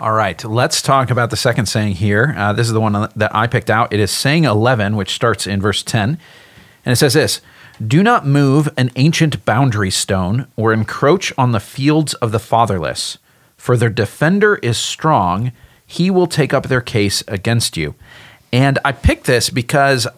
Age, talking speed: 40-59, 190 wpm